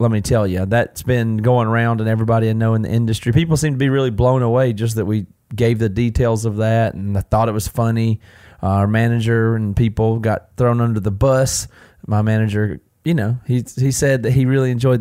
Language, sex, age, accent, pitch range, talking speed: English, male, 30-49, American, 110-130 Hz, 225 wpm